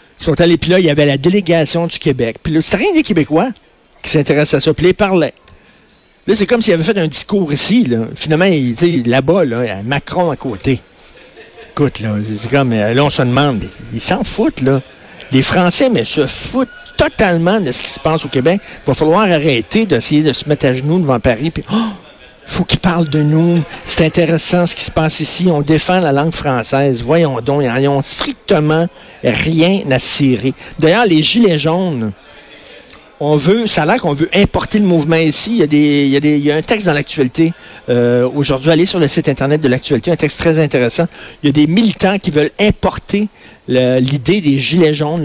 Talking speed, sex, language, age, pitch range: 215 wpm, male, French, 50-69, 140-180 Hz